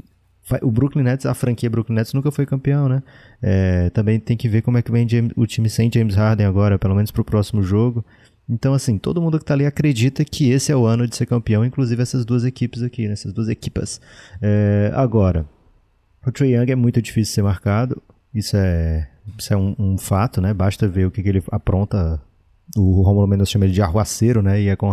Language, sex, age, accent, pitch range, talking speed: Portuguese, male, 20-39, Brazilian, 100-120 Hz, 225 wpm